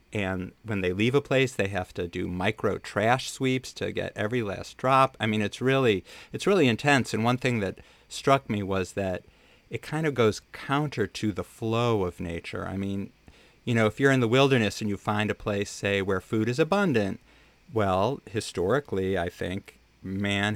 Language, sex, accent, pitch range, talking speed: English, male, American, 95-120 Hz, 195 wpm